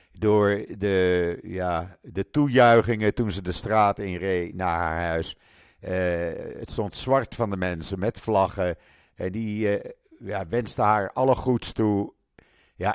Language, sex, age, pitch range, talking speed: Dutch, male, 50-69, 90-120 Hz, 155 wpm